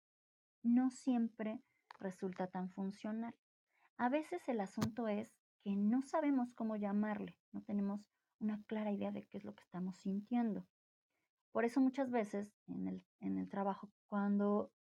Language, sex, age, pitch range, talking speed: Spanish, female, 30-49, 195-240 Hz, 150 wpm